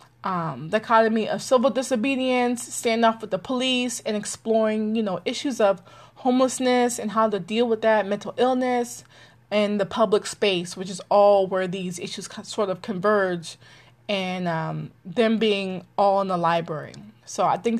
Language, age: English, 20-39